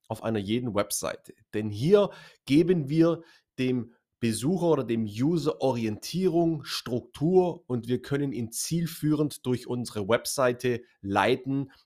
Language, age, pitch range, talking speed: German, 30-49, 110-160 Hz, 120 wpm